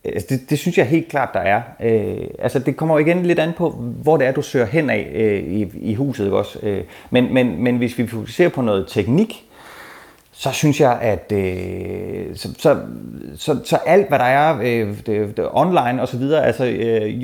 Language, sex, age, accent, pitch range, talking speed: Danish, male, 30-49, native, 110-150 Hz, 205 wpm